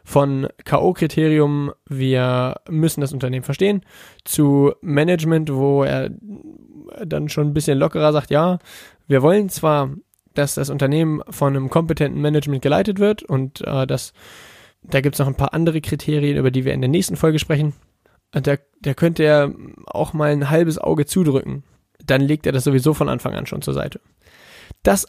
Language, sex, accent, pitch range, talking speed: German, male, German, 135-155 Hz, 170 wpm